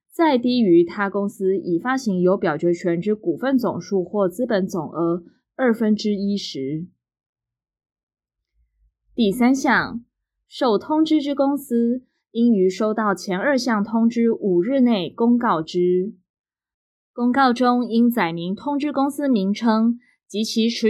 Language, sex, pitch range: Chinese, female, 185-245 Hz